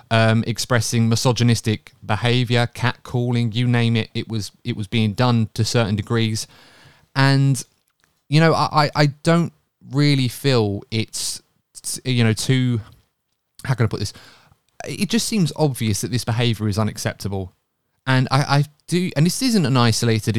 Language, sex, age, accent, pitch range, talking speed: English, male, 20-39, British, 105-125 Hz, 155 wpm